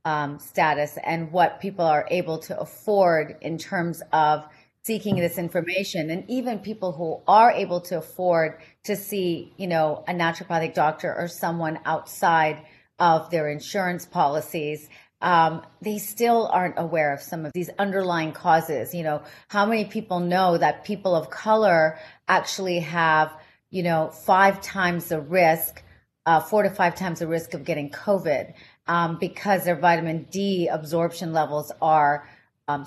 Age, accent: 30-49, American